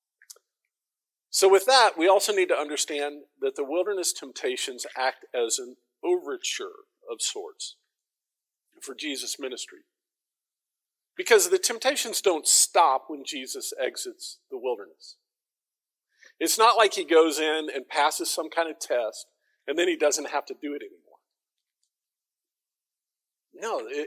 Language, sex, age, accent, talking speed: English, male, 50-69, American, 135 wpm